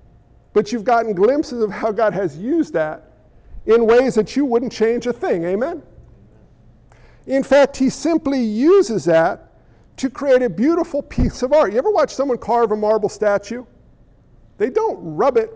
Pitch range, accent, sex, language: 160-245 Hz, American, male, English